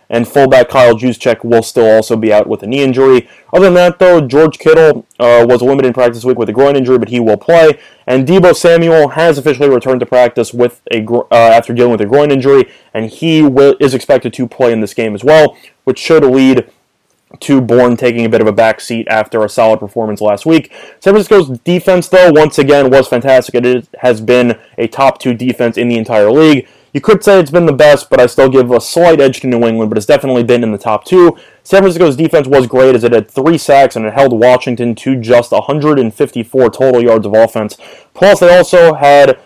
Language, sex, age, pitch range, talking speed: English, male, 20-39, 120-150 Hz, 225 wpm